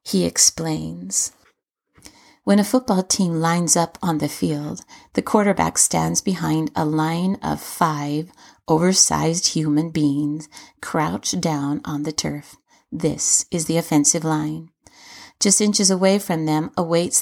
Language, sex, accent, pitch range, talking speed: English, female, American, 155-185 Hz, 130 wpm